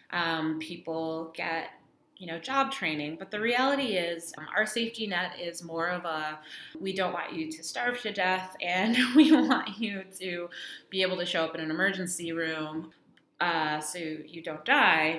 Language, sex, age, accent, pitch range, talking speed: English, female, 20-39, American, 150-195 Hz, 180 wpm